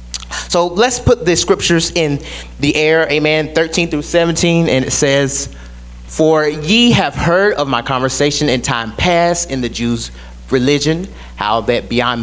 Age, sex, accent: 30-49, male, American